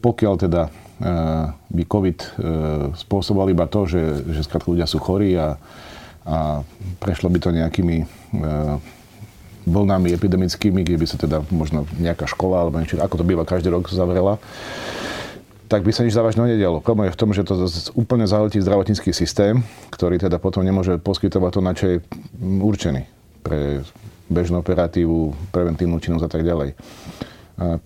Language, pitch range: Slovak, 80-100 Hz